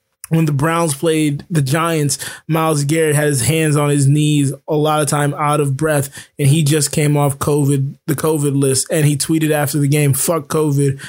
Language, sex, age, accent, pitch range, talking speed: English, male, 20-39, American, 135-155 Hz, 205 wpm